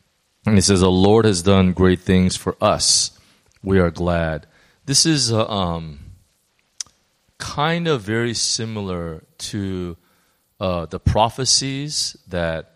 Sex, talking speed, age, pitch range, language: male, 120 wpm, 30-49, 85-110 Hz, English